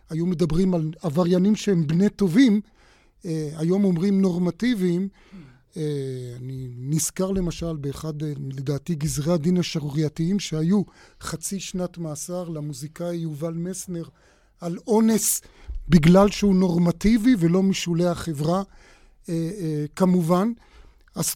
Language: Hebrew